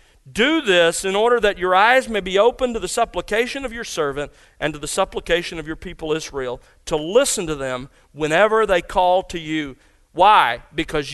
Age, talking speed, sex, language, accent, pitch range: 40-59, 190 wpm, male, English, American, 150-220 Hz